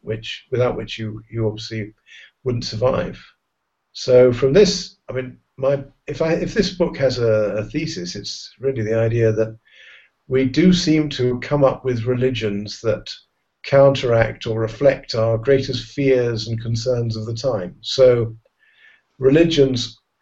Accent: British